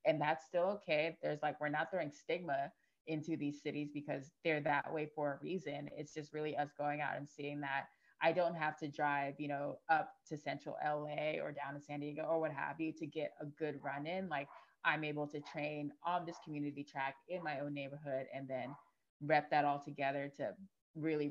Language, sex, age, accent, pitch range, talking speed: English, female, 20-39, American, 145-160 Hz, 215 wpm